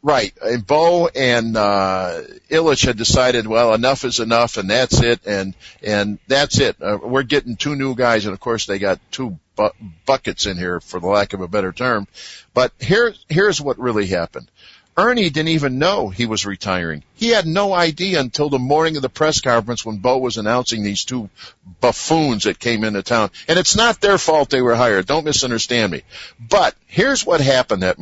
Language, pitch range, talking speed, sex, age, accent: English, 105-150 Hz, 200 wpm, male, 50-69, American